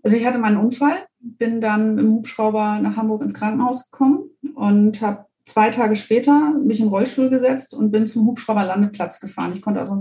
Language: German